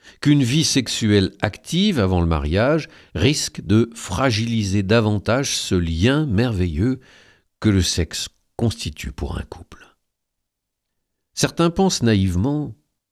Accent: French